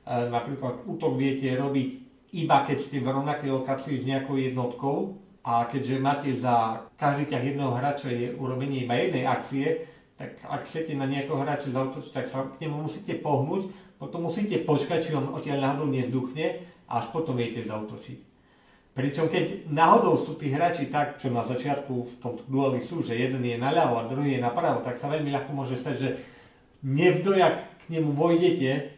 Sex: male